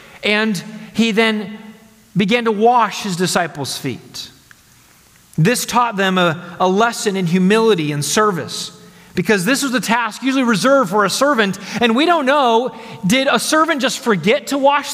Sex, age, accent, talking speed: male, 30-49, American, 160 wpm